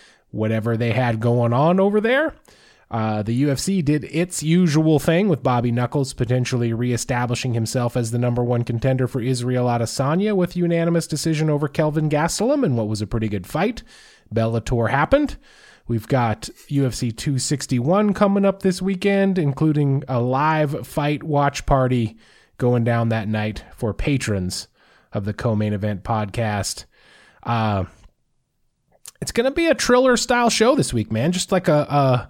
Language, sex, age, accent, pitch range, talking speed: English, male, 20-39, American, 115-160 Hz, 165 wpm